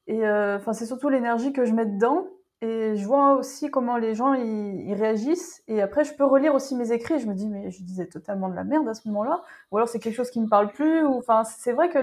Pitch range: 205-255 Hz